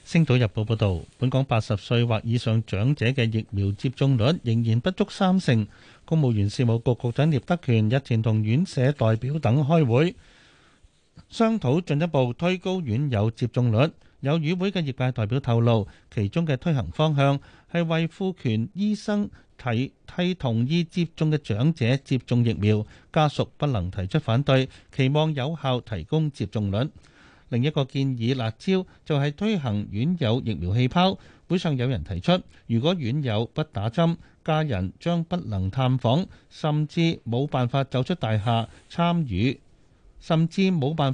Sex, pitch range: male, 115-160 Hz